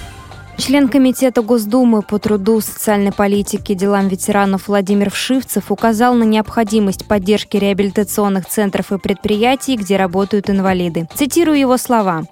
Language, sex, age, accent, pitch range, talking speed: Russian, female, 20-39, native, 200-230 Hz, 120 wpm